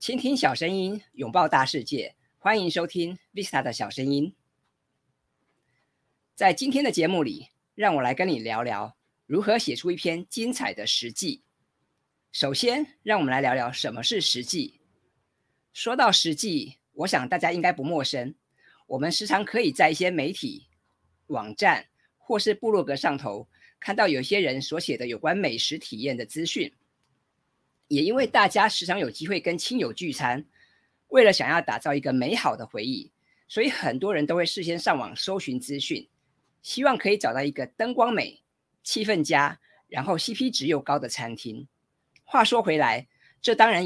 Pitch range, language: 145-230 Hz, Chinese